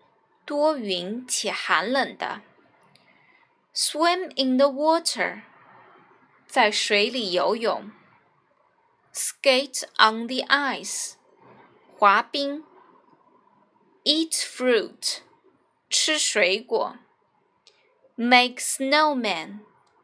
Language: Chinese